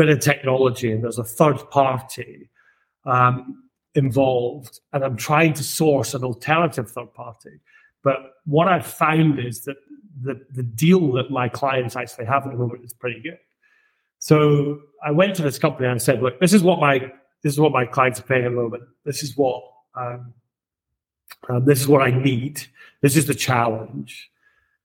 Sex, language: male, English